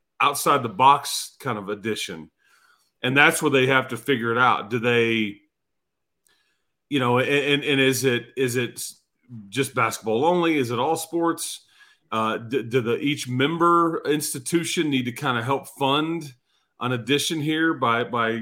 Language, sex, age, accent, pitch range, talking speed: English, male, 40-59, American, 115-140 Hz, 165 wpm